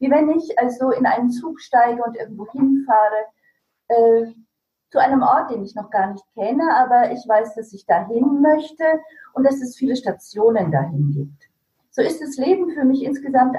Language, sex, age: German, female, 40-59